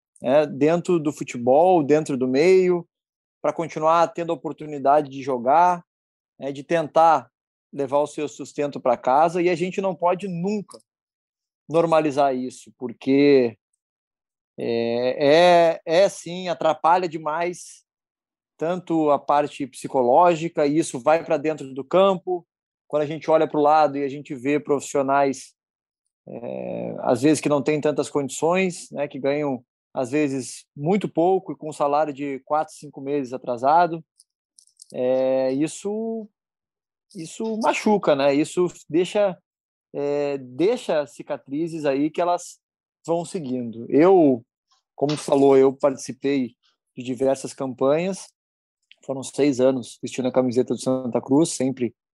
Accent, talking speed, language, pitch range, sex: Brazilian, 135 wpm, Portuguese, 135-170 Hz, male